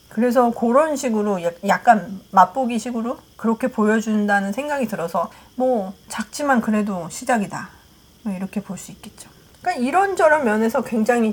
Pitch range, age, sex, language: 185-235 Hz, 40-59, female, Korean